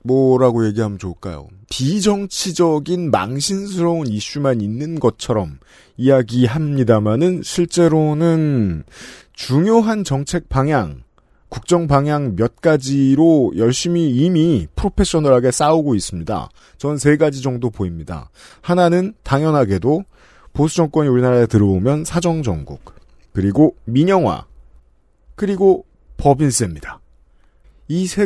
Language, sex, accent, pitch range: Korean, male, native, 105-170 Hz